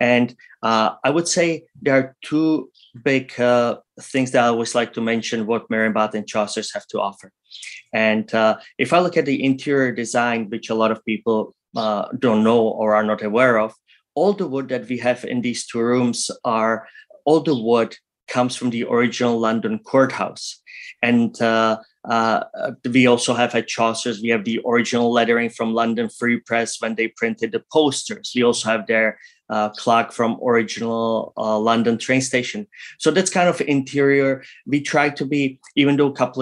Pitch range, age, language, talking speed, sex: 115-130 Hz, 20-39, English, 185 wpm, male